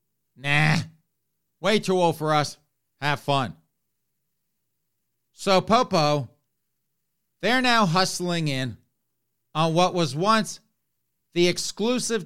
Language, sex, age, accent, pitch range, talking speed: English, male, 50-69, American, 140-185 Hz, 100 wpm